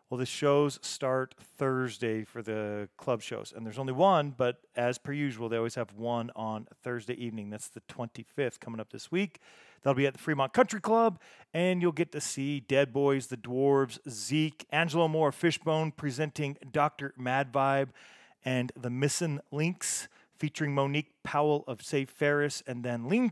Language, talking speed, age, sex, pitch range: English, 180 wpm, 40-59, male, 125-145 Hz